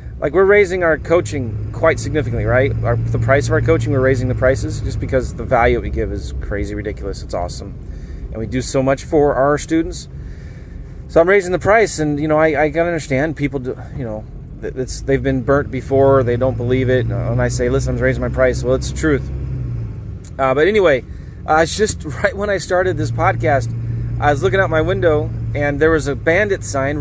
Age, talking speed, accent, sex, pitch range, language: 30-49, 220 wpm, American, male, 115-155 Hz, English